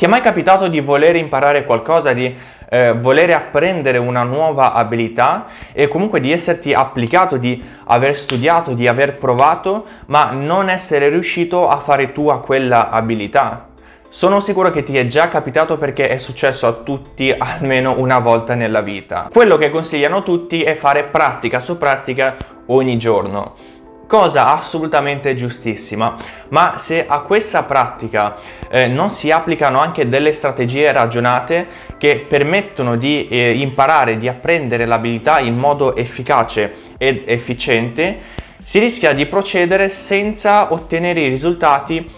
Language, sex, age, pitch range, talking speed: Italian, male, 20-39, 120-160 Hz, 140 wpm